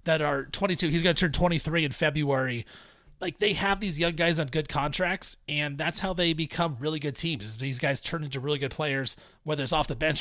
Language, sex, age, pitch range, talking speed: English, male, 30-49, 140-175 Hz, 235 wpm